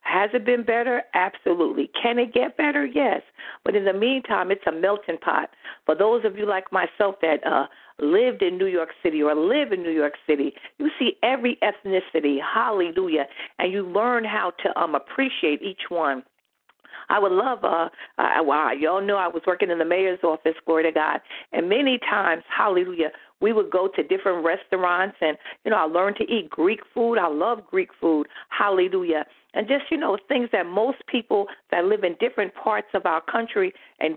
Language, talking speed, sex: English, 195 wpm, female